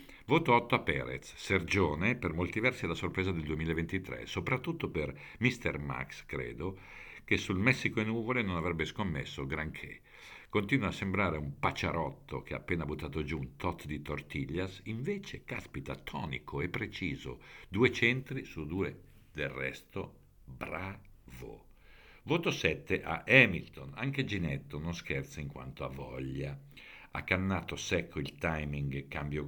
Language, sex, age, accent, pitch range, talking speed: Italian, male, 50-69, native, 70-100 Hz, 145 wpm